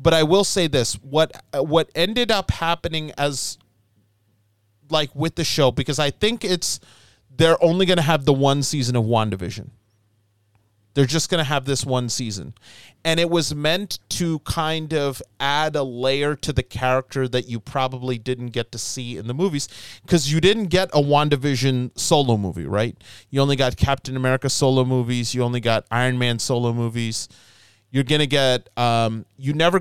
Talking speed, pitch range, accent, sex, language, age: 180 wpm, 115-160 Hz, American, male, English, 30-49